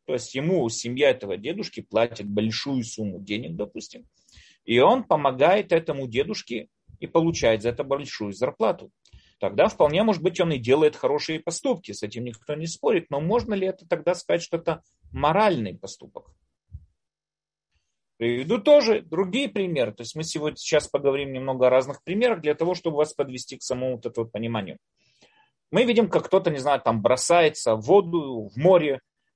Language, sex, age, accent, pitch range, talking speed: Russian, male, 30-49, native, 115-175 Hz, 170 wpm